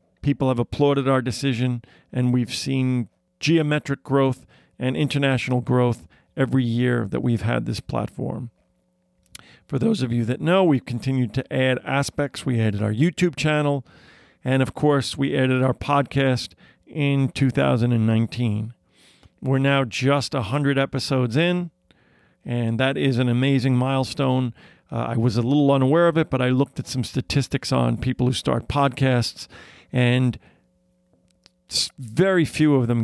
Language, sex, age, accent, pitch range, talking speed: English, male, 40-59, American, 115-135 Hz, 145 wpm